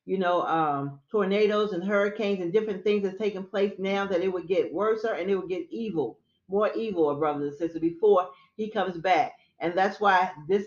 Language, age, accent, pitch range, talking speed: English, 40-59, American, 180-210 Hz, 200 wpm